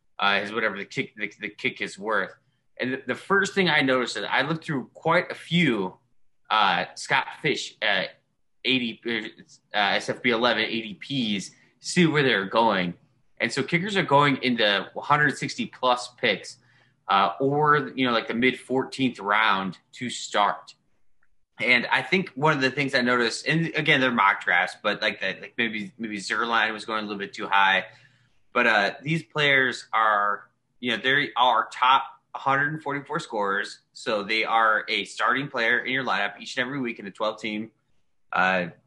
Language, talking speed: English, 175 wpm